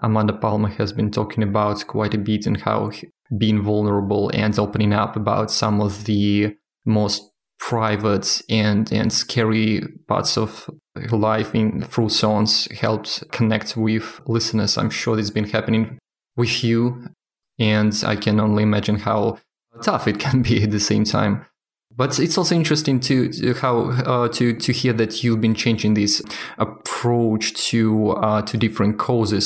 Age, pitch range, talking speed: 20-39, 105-120 Hz, 165 wpm